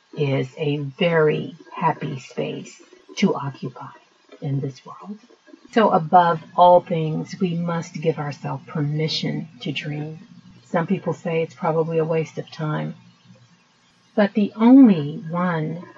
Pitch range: 155-200 Hz